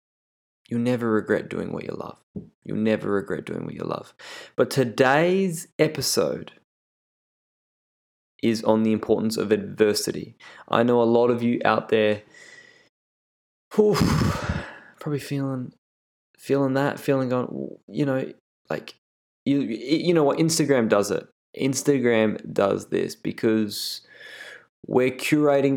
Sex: male